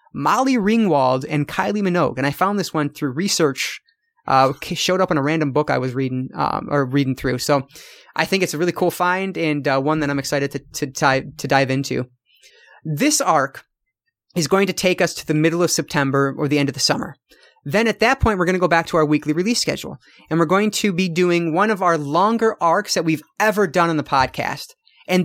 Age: 30-49